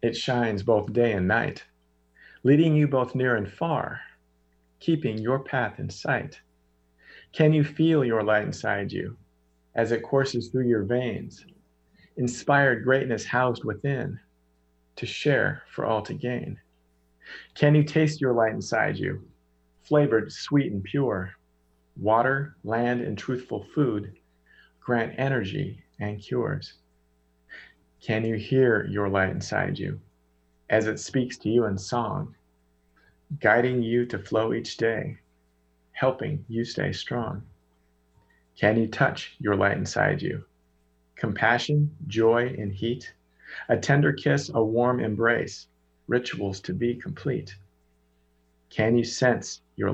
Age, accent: 40-59, American